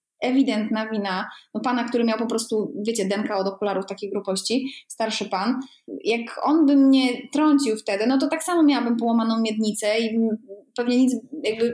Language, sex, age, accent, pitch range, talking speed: Polish, female, 20-39, native, 200-260 Hz, 170 wpm